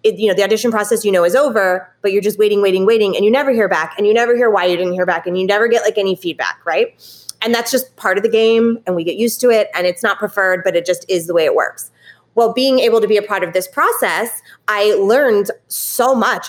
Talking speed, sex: 275 wpm, female